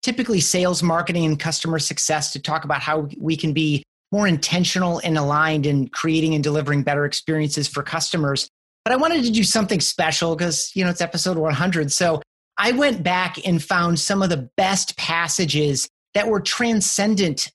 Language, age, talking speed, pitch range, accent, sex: English, 30-49, 180 wpm, 155-185 Hz, American, male